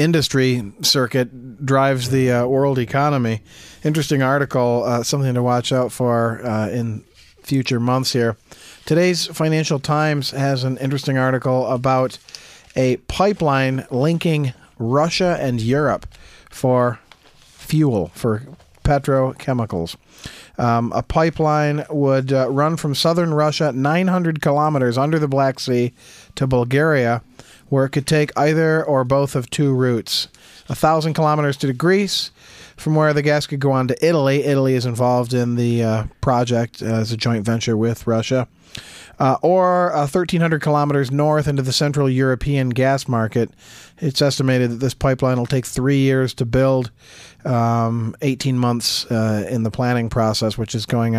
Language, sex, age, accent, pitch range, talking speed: English, male, 40-59, American, 120-145 Hz, 145 wpm